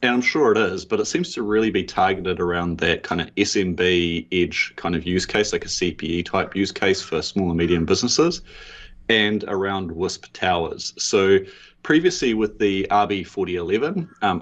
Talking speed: 180 wpm